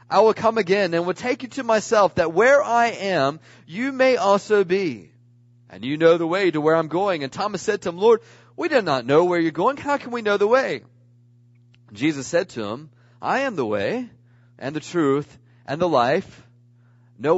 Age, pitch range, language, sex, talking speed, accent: 40-59, 135-220 Hz, English, male, 210 wpm, American